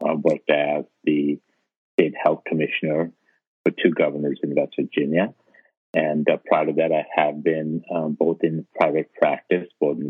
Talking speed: 165 wpm